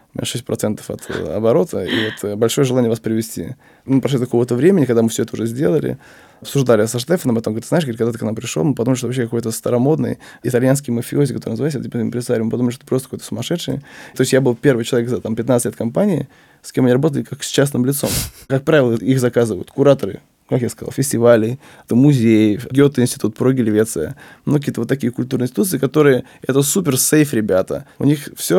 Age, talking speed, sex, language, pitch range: 20-39, 205 wpm, male, Russian, 115-140 Hz